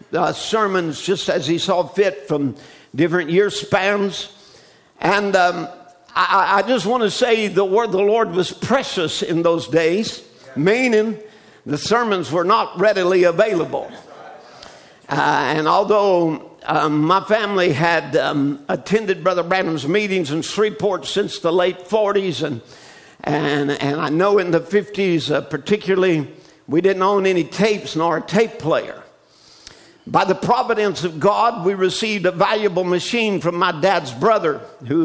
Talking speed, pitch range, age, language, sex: 145 wpm, 165-205 Hz, 50-69, English, male